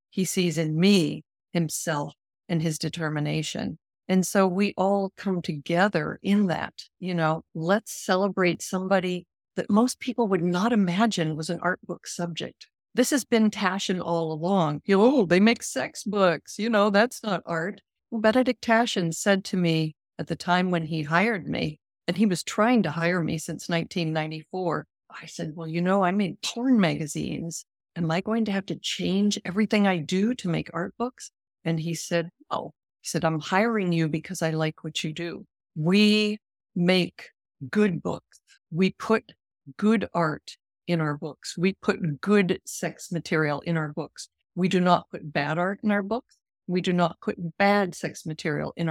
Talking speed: 180 wpm